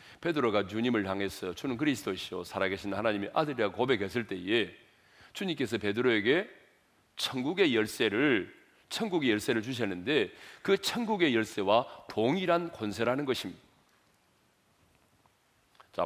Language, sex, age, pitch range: Korean, male, 40-59, 110-185 Hz